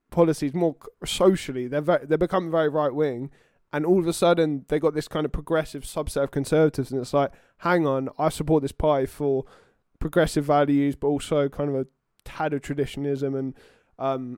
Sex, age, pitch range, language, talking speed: male, 20-39, 135-160 Hz, English, 190 wpm